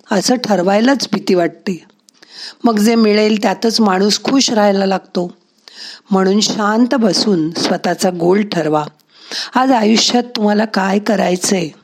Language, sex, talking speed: Marathi, female, 115 wpm